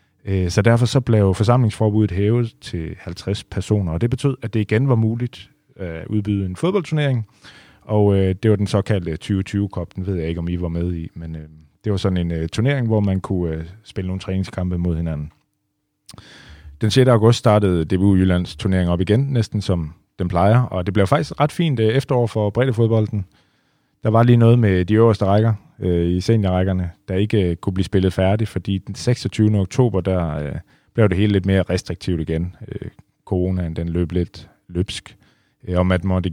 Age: 30-49